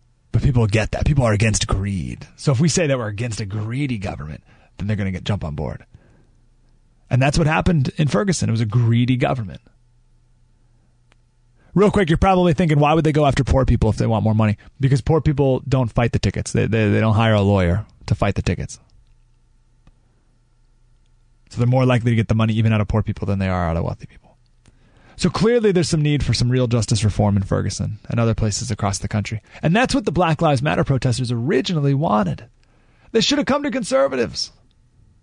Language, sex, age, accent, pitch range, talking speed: English, male, 30-49, American, 115-140 Hz, 210 wpm